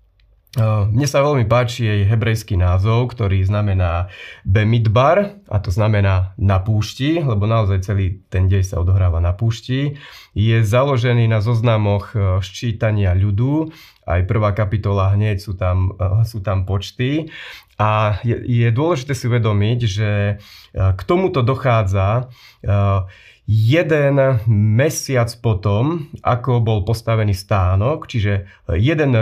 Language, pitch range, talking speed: Slovak, 100-120 Hz, 120 wpm